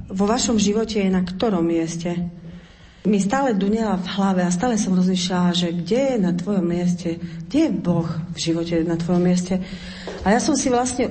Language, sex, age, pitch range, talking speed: Slovak, female, 40-59, 185-230 Hz, 190 wpm